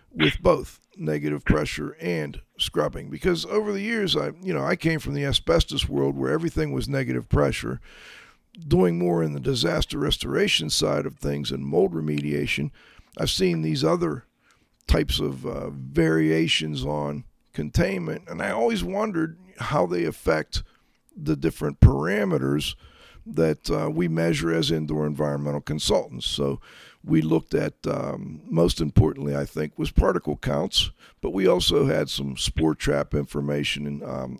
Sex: male